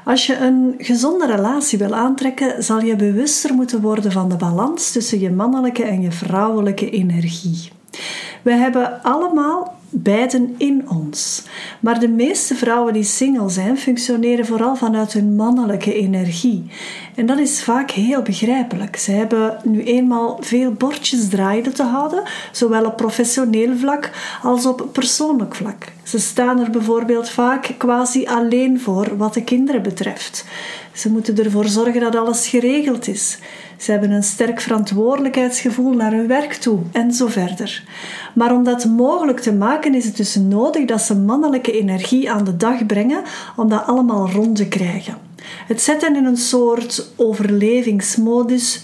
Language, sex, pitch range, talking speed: Dutch, female, 210-255 Hz, 155 wpm